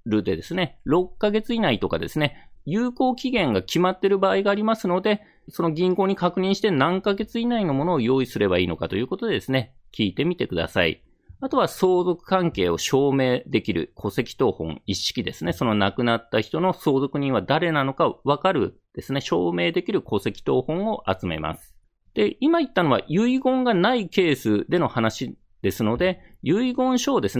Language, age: Japanese, 40-59